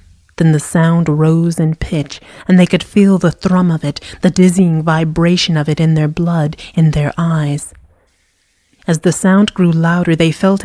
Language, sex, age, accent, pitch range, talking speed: English, female, 30-49, American, 150-175 Hz, 180 wpm